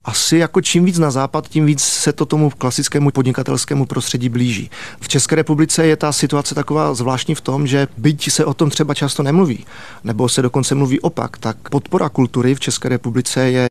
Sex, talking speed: male, 195 wpm